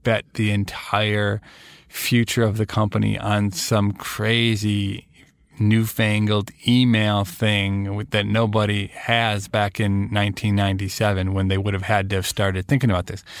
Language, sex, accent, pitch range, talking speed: English, male, American, 105-120 Hz, 135 wpm